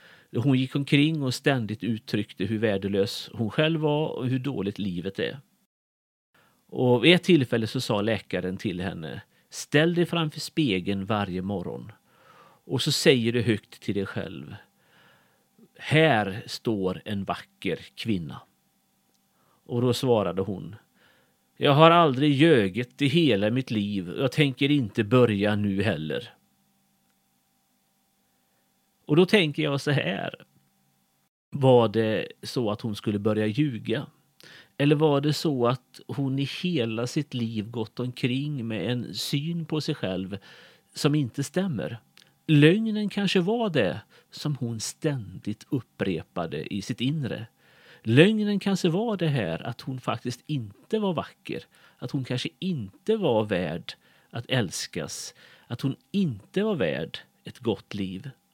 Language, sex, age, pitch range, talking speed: Swedish, male, 40-59, 105-150 Hz, 140 wpm